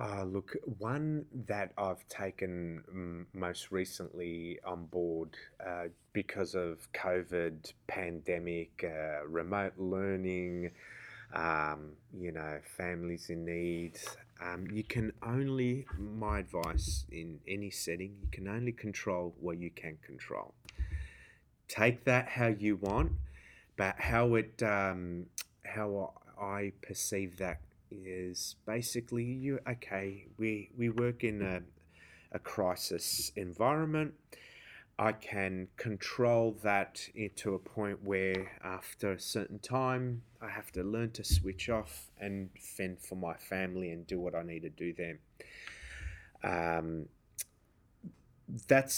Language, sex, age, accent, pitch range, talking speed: English, male, 30-49, Australian, 85-110 Hz, 120 wpm